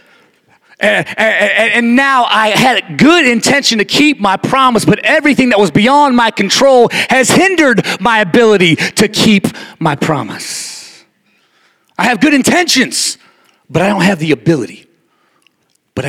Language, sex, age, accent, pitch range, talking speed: English, male, 40-59, American, 175-250 Hz, 145 wpm